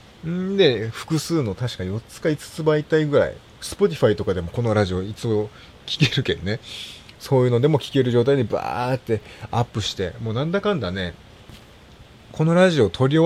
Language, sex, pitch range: Japanese, male, 100-135 Hz